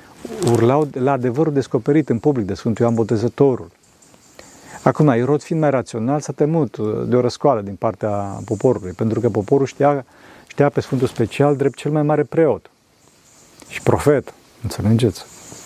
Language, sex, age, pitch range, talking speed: Romanian, male, 40-59, 110-140 Hz, 150 wpm